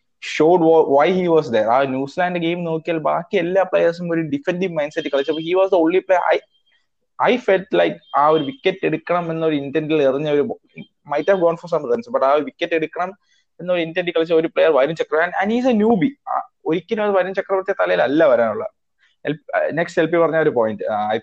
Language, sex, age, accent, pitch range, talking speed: English, male, 20-39, Indian, 140-180 Hz, 170 wpm